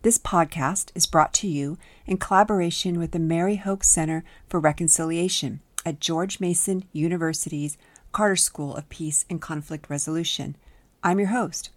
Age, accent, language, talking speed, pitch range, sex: 50-69, American, English, 150 wpm, 155-185 Hz, female